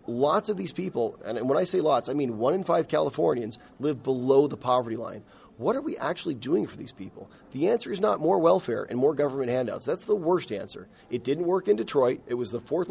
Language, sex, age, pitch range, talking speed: English, male, 30-49, 125-165 Hz, 235 wpm